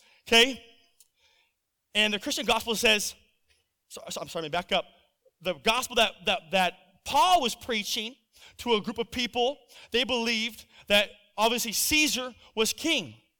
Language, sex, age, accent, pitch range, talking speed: English, male, 30-49, American, 215-275 Hz, 150 wpm